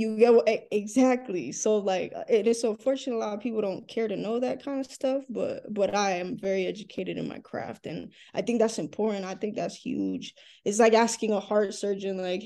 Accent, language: American, English